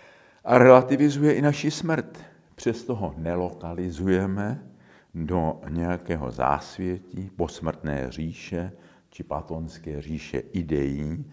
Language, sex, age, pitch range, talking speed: Czech, male, 50-69, 85-115 Hz, 90 wpm